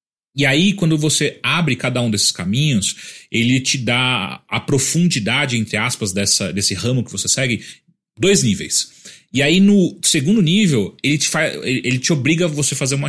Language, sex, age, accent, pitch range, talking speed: Portuguese, male, 30-49, Brazilian, 115-160 Hz, 180 wpm